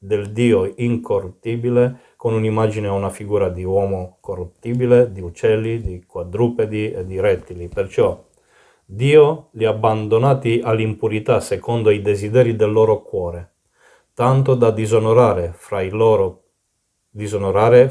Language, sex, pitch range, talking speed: Italian, male, 100-125 Hz, 125 wpm